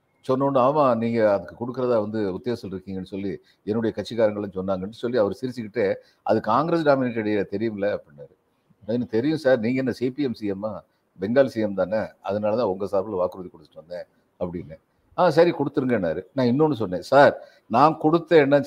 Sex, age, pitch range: male, 50-69, 120-160 Hz